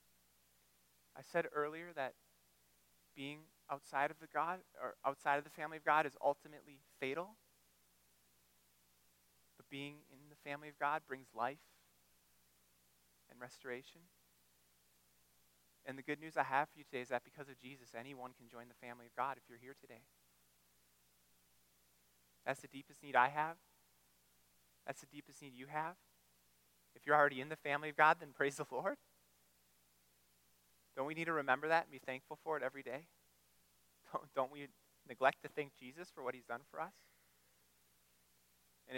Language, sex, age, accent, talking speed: English, male, 30-49, American, 165 wpm